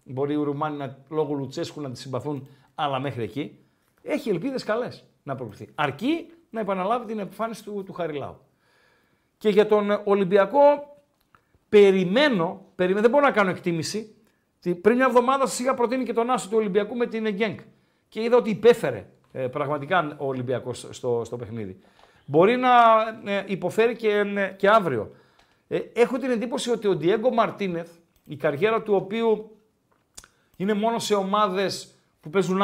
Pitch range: 160-220 Hz